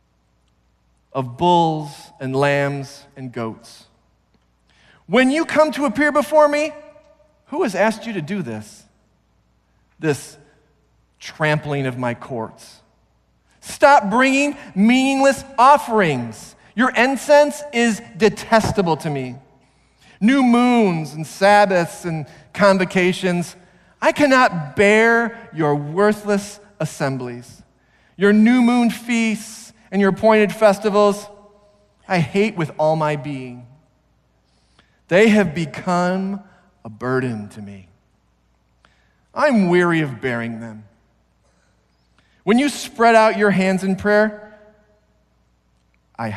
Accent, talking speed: American, 105 wpm